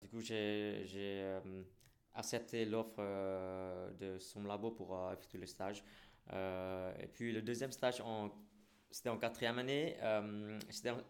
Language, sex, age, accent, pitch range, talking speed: French, male, 20-39, French, 100-115 Hz, 155 wpm